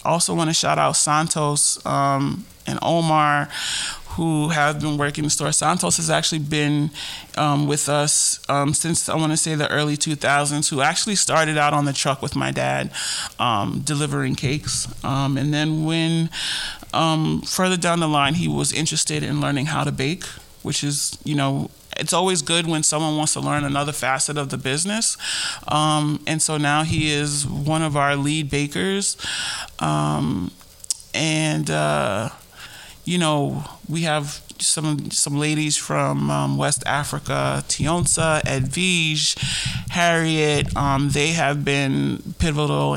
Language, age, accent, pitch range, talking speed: English, 30-49, American, 140-160 Hz, 155 wpm